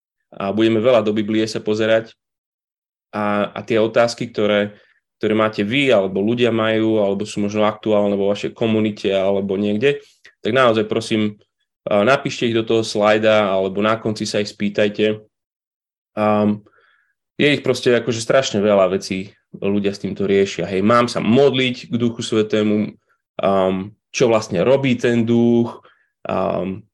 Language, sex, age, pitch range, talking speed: Slovak, male, 20-39, 105-120 Hz, 150 wpm